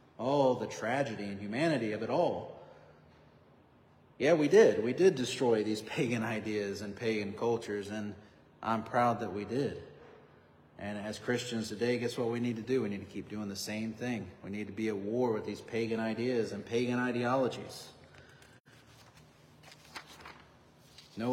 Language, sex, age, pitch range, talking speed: English, male, 40-59, 110-175 Hz, 165 wpm